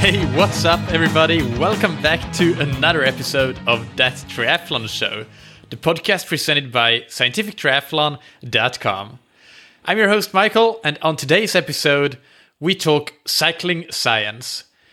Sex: male